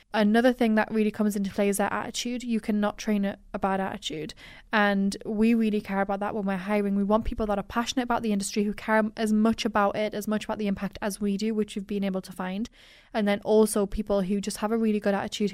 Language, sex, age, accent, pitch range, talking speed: English, female, 10-29, British, 200-220 Hz, 255 wpm